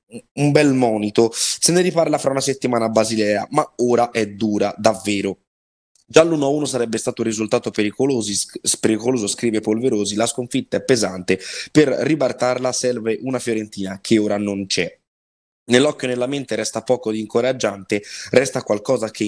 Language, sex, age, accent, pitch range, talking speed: Italian, male, 20-39, native, 105-125 Hz, 155 wpm